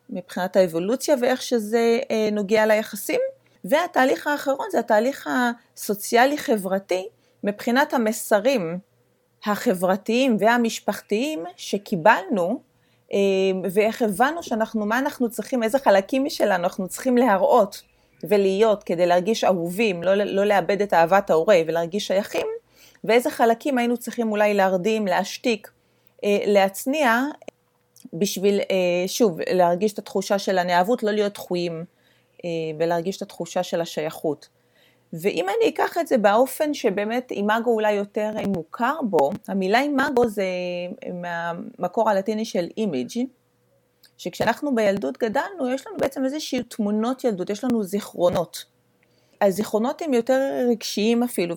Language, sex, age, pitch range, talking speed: Hebrew, female, 30-49, 190-245 Hz, 120 wpm